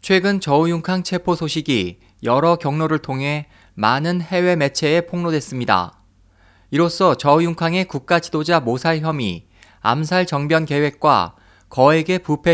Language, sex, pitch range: Korean, male, 125-170 Hz